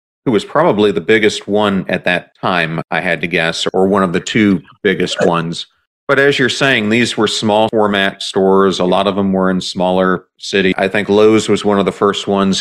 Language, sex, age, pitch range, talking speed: English, male, 40-59, 90-105 Hz, 220 wpm